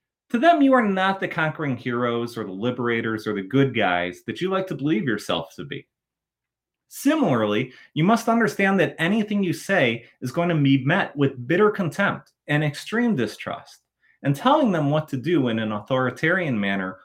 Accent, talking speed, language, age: American, 180 wpm, English, 30-49